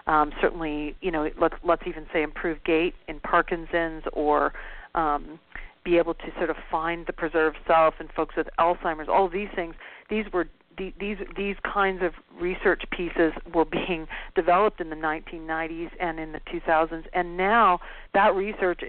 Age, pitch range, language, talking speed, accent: 40-59, 165-190 Hz, English, 165 wpm, American